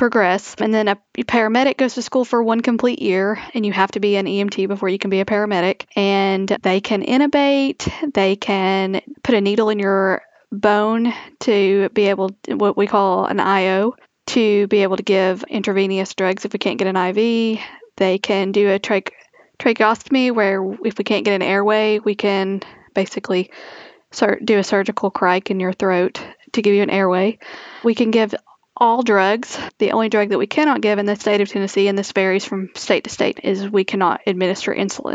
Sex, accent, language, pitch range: female, American, English, 195-220 Hz